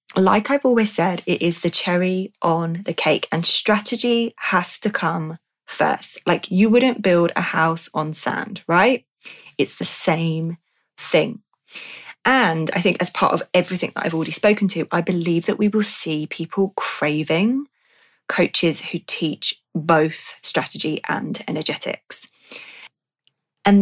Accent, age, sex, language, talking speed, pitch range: British, 20-39, female, English, 145 wpm, 165-210 Hz